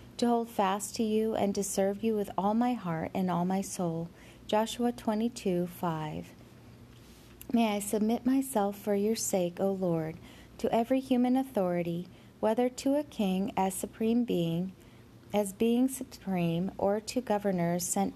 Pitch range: 180-225 Hz